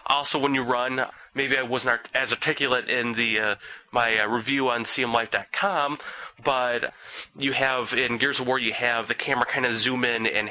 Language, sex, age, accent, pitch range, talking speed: English, male, 30-49, American, 110-130 Hz, 190 wpm